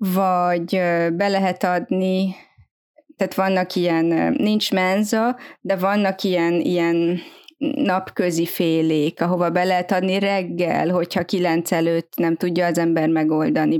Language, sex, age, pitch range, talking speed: Hungarian, female, 20-39, 180-225 Hz, 120 wpm